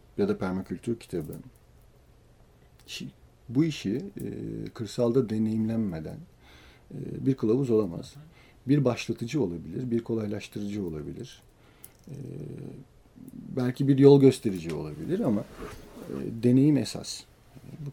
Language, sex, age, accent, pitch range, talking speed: Turkish, male, 50-69, native, 95-140 Hz, 85 wpm